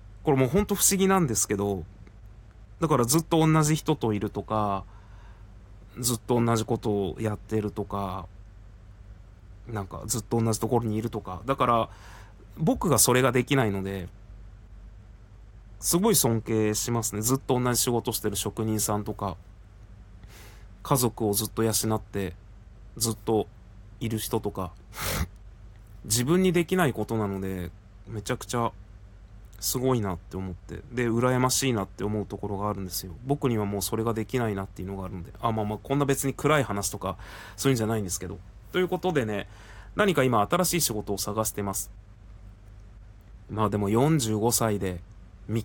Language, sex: Japanese, male